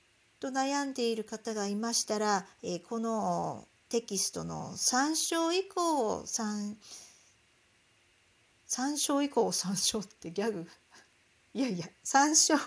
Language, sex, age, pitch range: Japanese, female, 50-69, 210-315 Hz